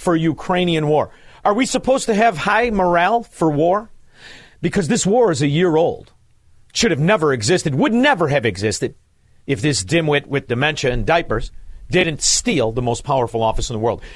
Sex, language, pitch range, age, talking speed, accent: male, English, 140-205 Hz, 50-69, 180 wpm, American